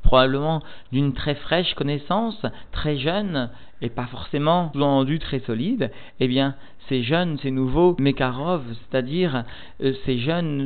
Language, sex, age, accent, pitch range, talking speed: French, male, 40-59, French, 120-145 Hz, 140 wpm